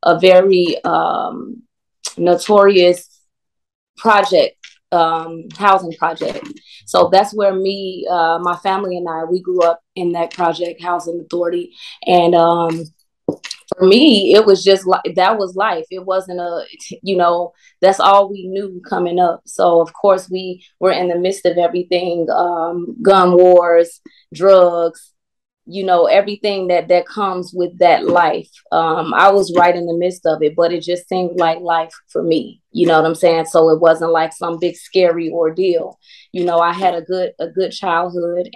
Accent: American